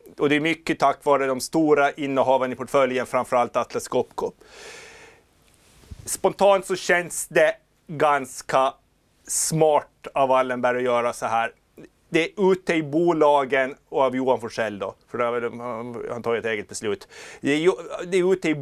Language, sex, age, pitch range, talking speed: Swedish, male, 30-49, 130-165 Hz, 160 wpm